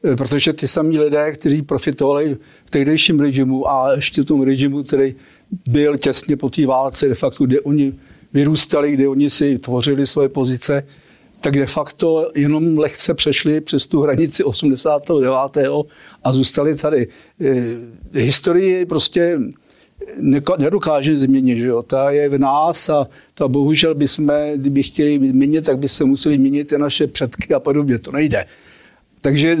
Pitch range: 135-155 Hz